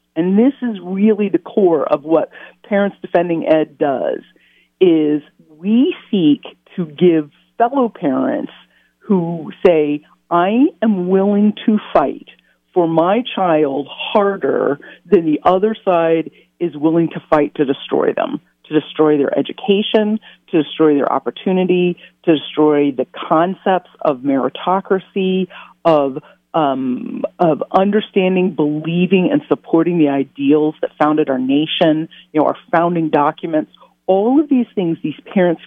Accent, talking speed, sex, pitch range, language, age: American, 135 wpm, female, 155-205 Hz, English, 50-69